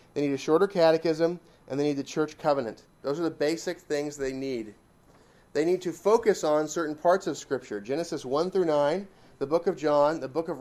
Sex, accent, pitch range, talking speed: male, American, 135-165 Hz, 215 wpm